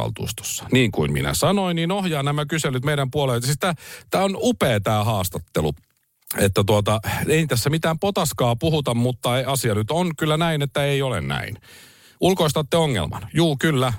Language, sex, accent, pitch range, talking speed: Finnish, male, native, 105-150 Hz, 160 wpm